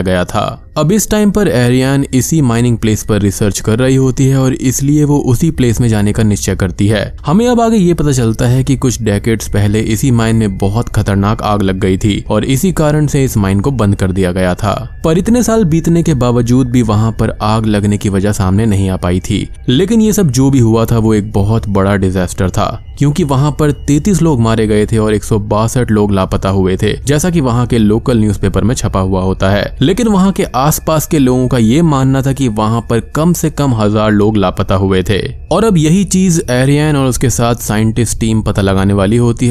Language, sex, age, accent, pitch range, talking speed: Hindi, male, 20-39, native, 105-135 Hz, 230 wpm